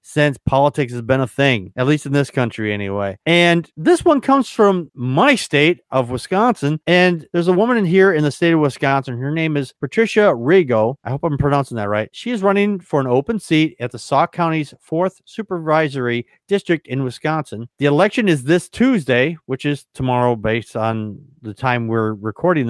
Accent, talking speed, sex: American, 195 wpm, male